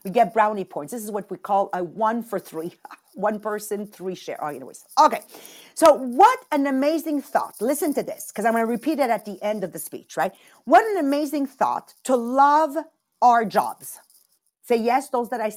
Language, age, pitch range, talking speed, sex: English, 50-69, 210-285 Hz, 210 wpm, female